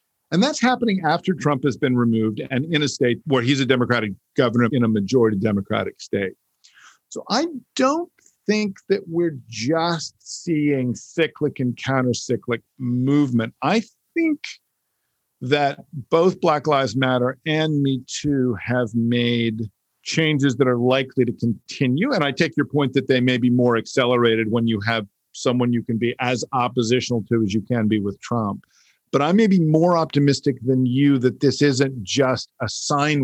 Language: English